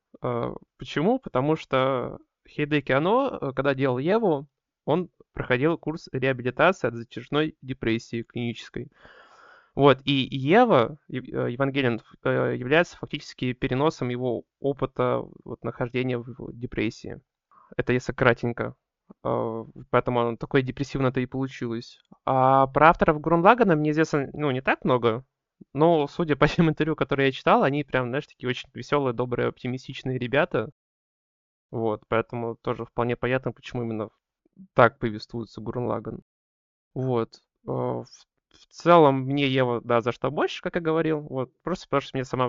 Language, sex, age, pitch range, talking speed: Russian, male, 20-39, 120-155 Hz, 130 wpm